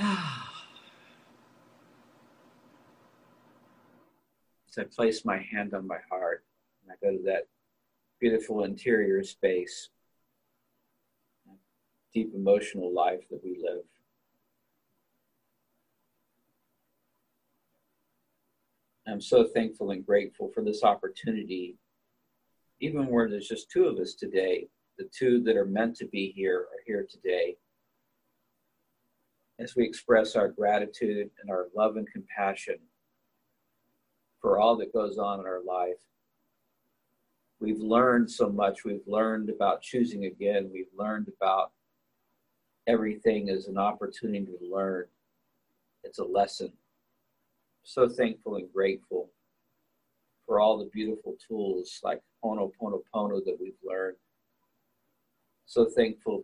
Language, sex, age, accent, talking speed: English, male, 50-69, American, 115 wpm